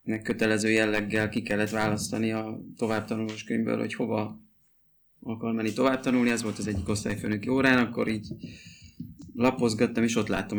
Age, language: 30-49, Hungarian